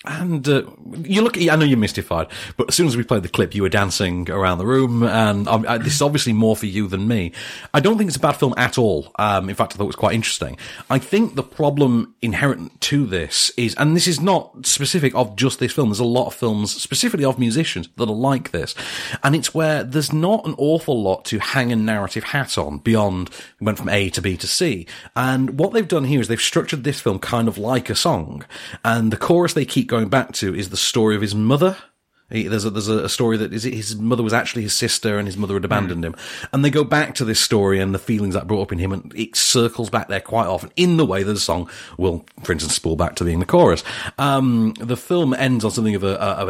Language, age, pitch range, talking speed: English, 40-59, 100-140 Hz, 255 wpm